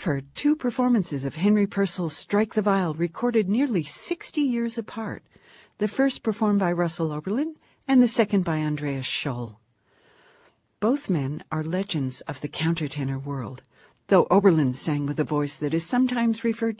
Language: English